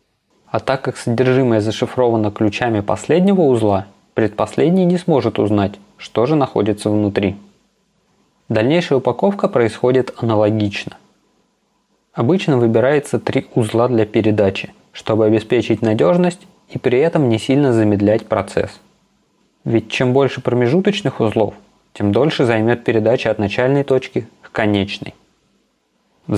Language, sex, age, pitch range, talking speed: Russian, male, 20-39, 105-130 Hz, 115 wpm